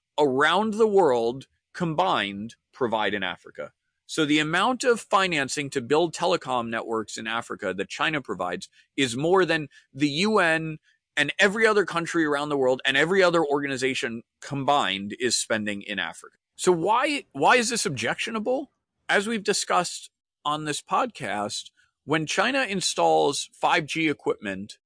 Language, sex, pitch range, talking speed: English, male, 125-185 Hz, 140 wpm